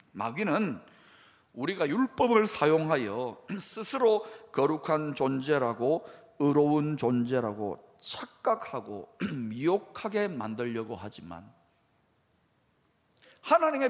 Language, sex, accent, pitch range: Korean, male, native, 140-235 Hz